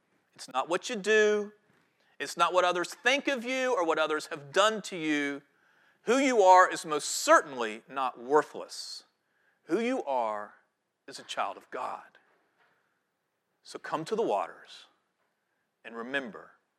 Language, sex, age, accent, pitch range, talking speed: English, male, 40-59, American, 160-220 Hz, 150 wpm